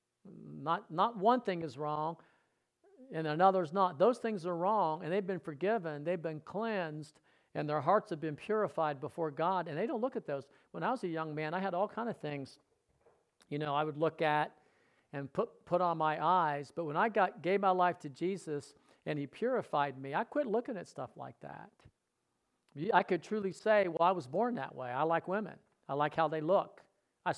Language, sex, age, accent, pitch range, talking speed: English, male, 50-69, American, 145-195 Hz, 215 wpm